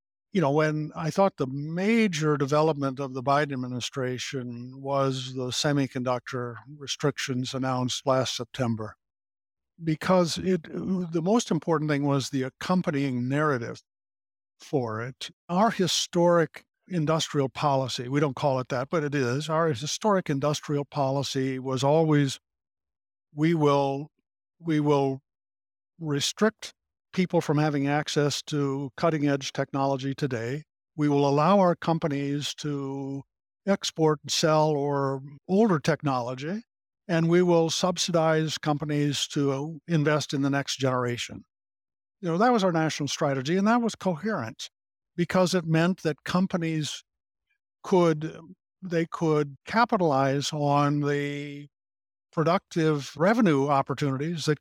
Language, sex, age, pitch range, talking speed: English, male, 60-79, 135-165 Hz, 120 wpm